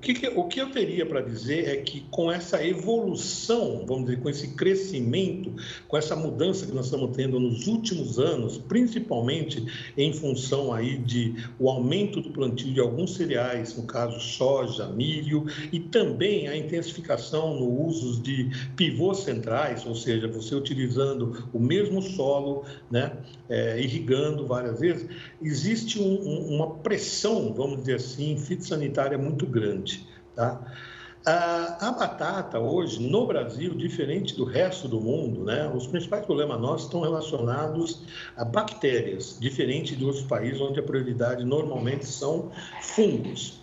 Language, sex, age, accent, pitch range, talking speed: Portuguese, male, 60-79, Brazilian, 120-170 Hz, 140 wpm